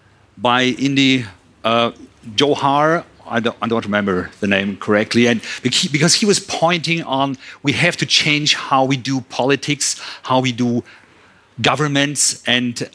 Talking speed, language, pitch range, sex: 145 wpm, English, 125-165 Hz, male